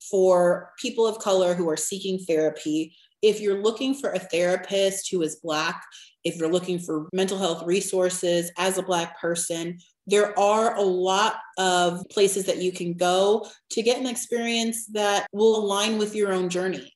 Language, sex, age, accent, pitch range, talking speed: English, female, 30-49, American, 170-200 Hz, 175 wpm